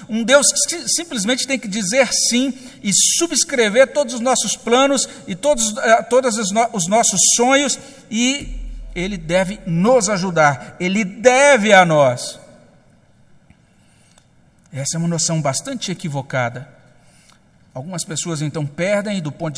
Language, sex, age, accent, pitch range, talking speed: Portuguese, male, 60-79, Brazilian, 175-235 Hz, 130 wpm